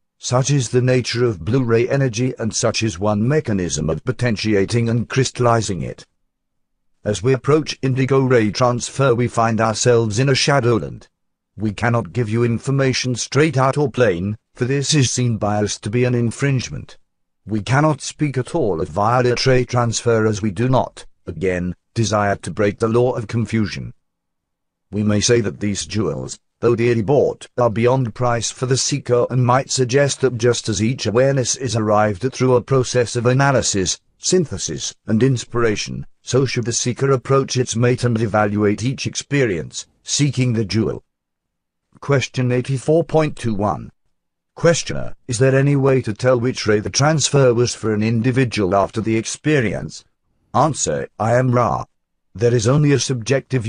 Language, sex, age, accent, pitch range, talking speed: English, male, 50-69, British, 110-130 Hz, 165 wpm